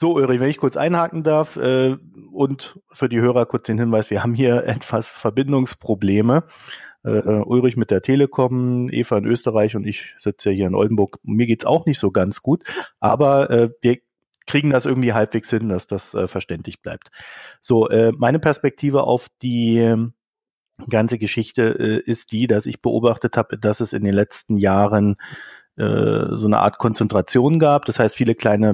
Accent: German